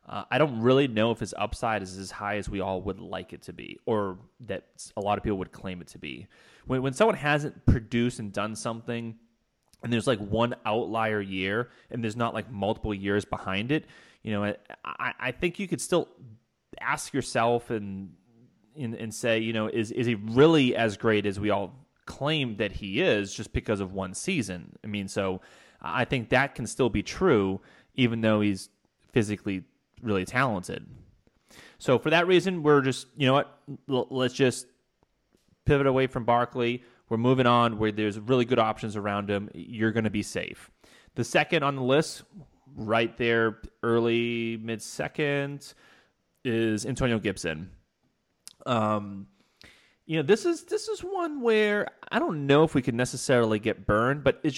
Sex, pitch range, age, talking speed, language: male, 105-130 Hz, 20-39, 180 wpm, English